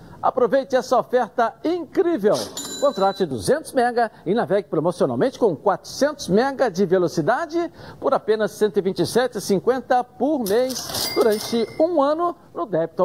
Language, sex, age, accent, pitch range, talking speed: Portuguese, male, 60-79, Brazilian, 175-250 Hz, 120 wpm